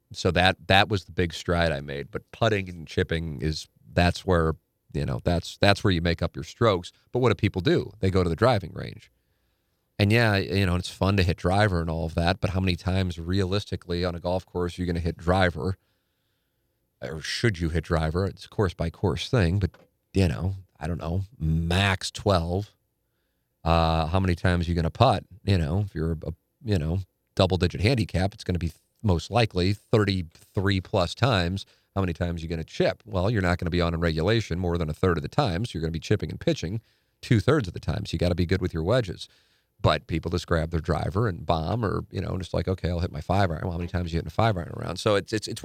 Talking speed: 245 wpm